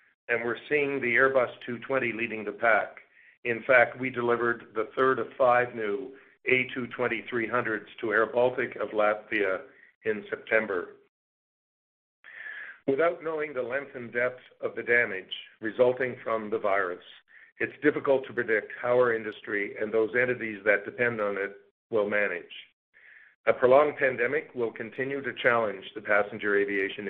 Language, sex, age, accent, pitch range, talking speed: English, male, 50-69, American, 115-150 Hz, 140 wpm